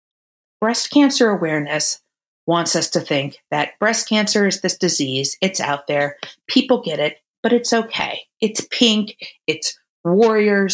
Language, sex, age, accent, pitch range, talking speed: English, female, 30-49, American, 160-210 Hz, 145 wpm